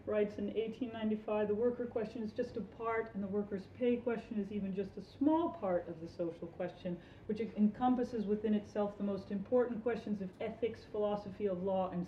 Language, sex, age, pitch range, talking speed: English, female, 40-59, 195-250 Hz, 195 wpm